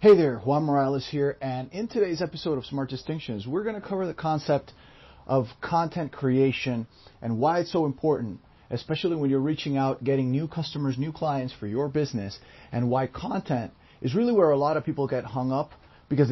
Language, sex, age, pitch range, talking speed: English, male, 40-59, 120-155 Hz, 195 wpm